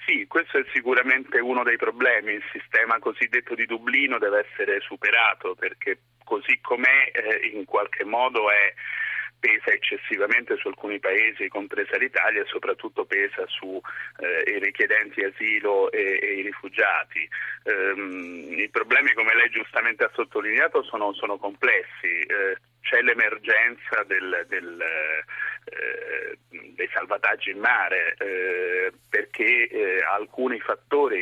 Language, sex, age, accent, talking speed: Italian, male, 40-59, native, 130 wpm